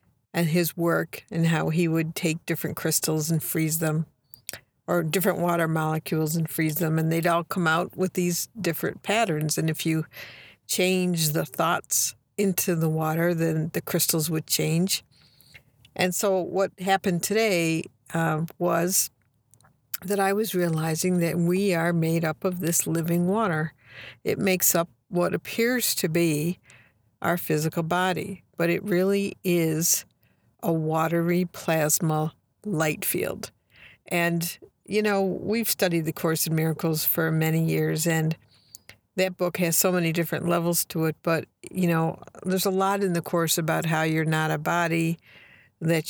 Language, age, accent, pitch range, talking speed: English, 60-79, American, 155-180 Hz, 155 wpm